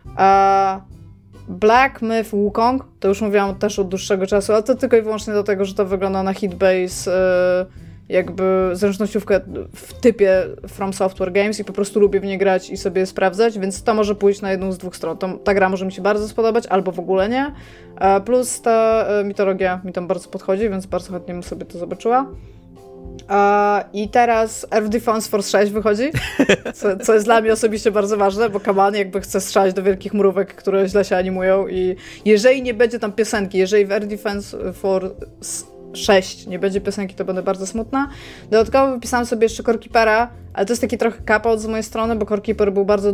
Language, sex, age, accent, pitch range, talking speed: Polish, female, 20-39, native, 190-220 Hz, 195 wpm